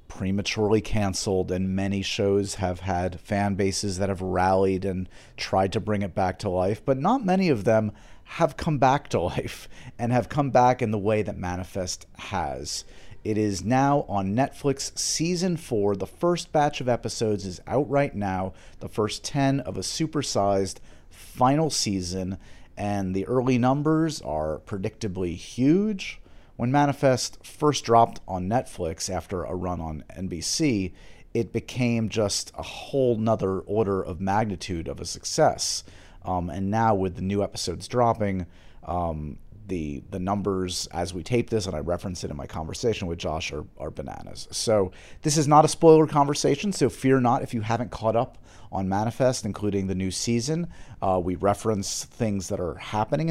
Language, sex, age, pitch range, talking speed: English, male, 30-49, 90-125 Hz, 170 wpm